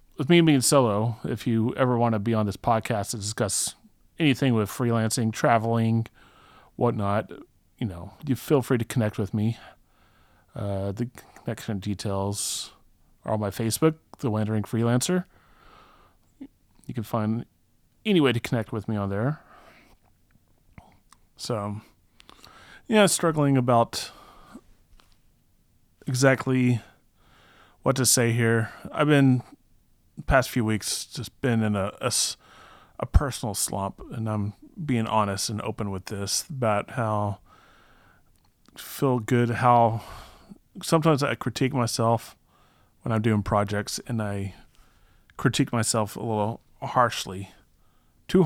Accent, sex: American, male